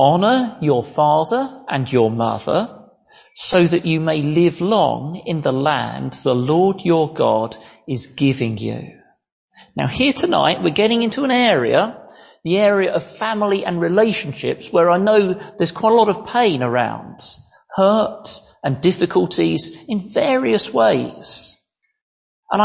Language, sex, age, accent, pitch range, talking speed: English, male, 40-59, British, 155-220 Hz, 140 wpm